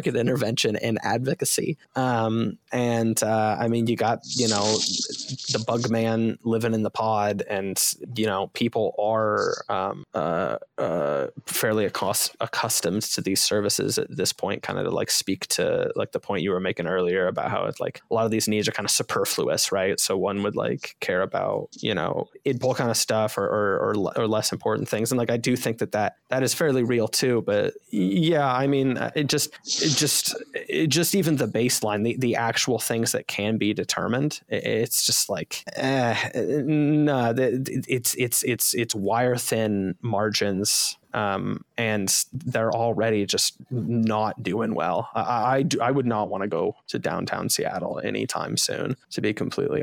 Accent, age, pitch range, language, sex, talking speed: American, 20-39, 110-130 Hz, English, male, 185 wpm